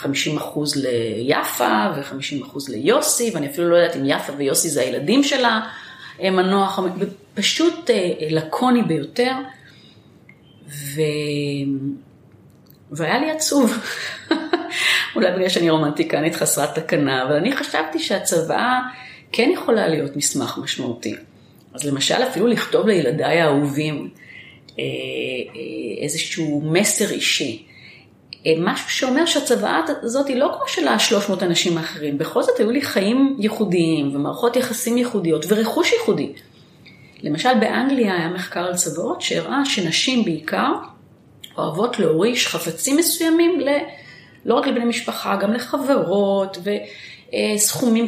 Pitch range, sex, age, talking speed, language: 160-250 Hz, female, 30-49, 110 wpm, Hebrew